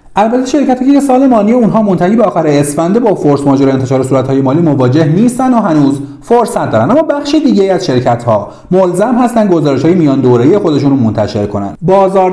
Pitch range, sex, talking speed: 110-180 Hz, male, 185 wpm